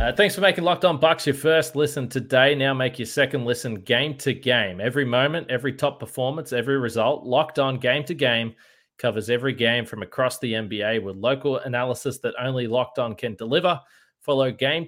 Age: 20-39